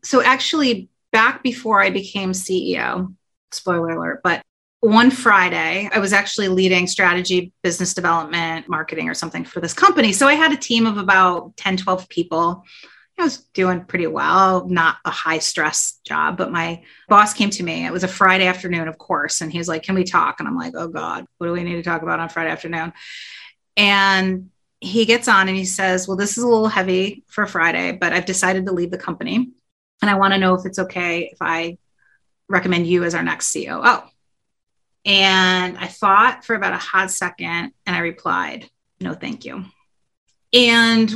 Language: English